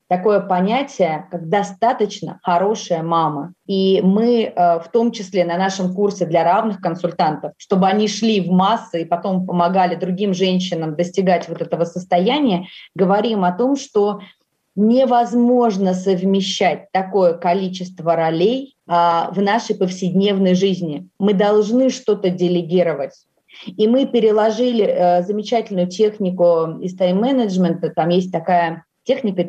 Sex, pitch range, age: female, 180-220 Hz, 30-49